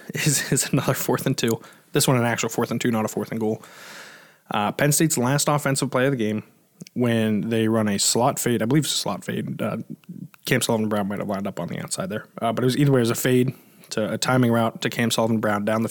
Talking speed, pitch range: 265 wpm, 115-145 Hz